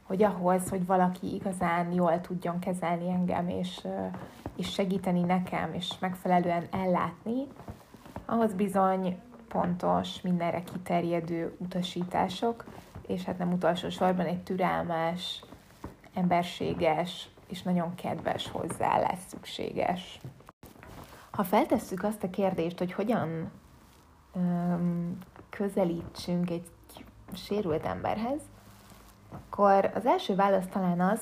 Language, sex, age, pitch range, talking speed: Hungarian, female, 20-39, 170-195 Hz, 100 wpm